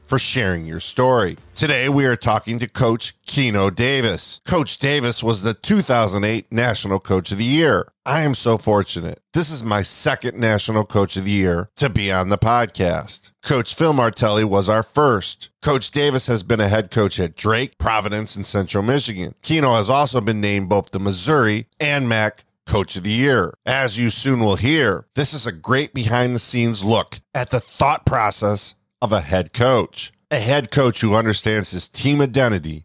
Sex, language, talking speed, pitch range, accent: male, English, 185 wpm, 100-125 Hz, American